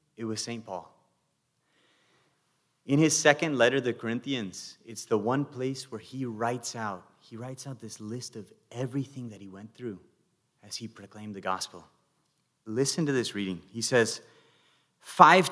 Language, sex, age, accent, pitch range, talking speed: English, male, 30-49, American, 110-140 Hz, 160 wpm